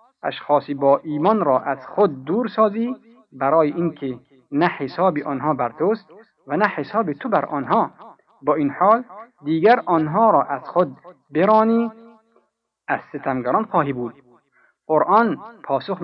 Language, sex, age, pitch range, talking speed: Persian, male, 50-69, 140-210 Hz, 135 wpm